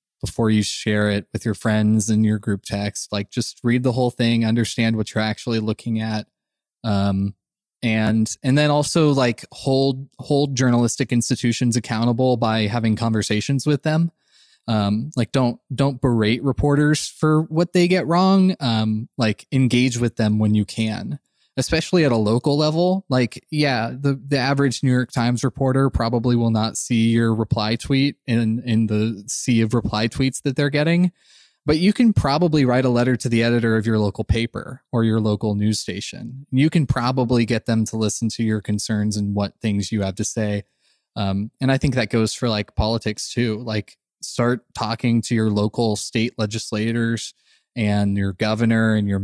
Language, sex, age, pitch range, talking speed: English, male, 20-39, 110-135 Hz, 180 wpm